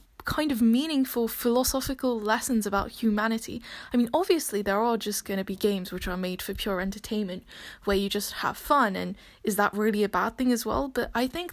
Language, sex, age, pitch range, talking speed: English, female, 10-29, 205-265 Hz, 210 wpm